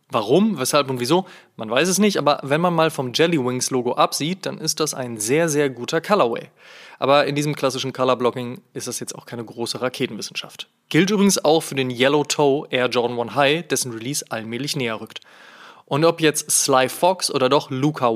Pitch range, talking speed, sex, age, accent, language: 130-160 Hz, 200 wpm, male, 20-39, German, German